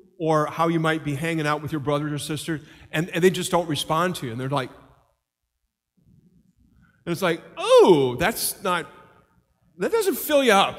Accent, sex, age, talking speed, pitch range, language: American, male, 50-69, 190 wpm, 140-180 Hz, English